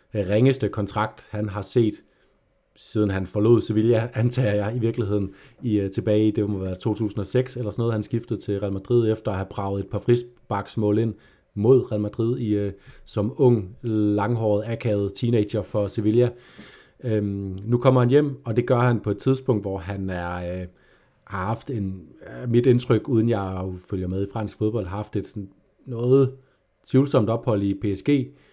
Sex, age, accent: male, 30-49, native